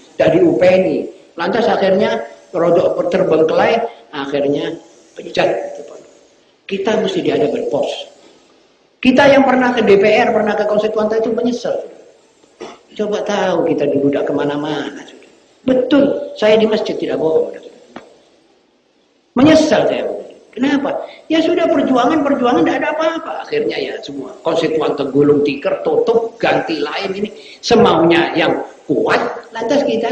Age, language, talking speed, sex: 40-59, Indonesian, 115 wpm, male